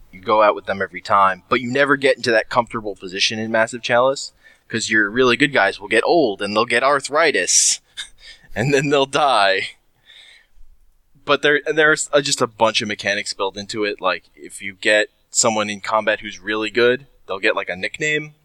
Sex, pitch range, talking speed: male, 95-125 Hz, 200 wpm